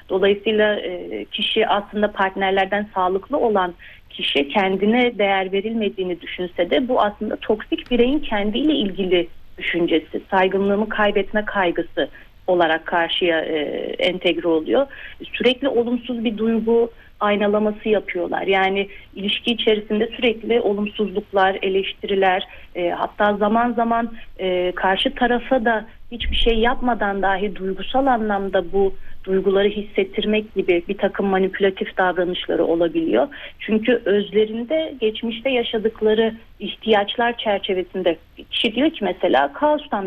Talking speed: 110 wpm